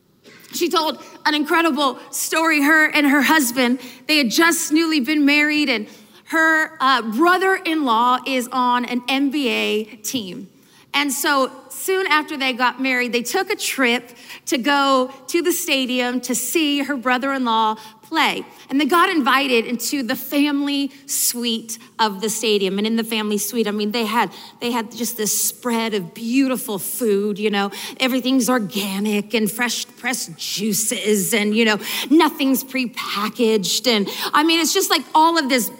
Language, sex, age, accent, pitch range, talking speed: English, female, 30-49, American, 245-310 Hz, 160 wpm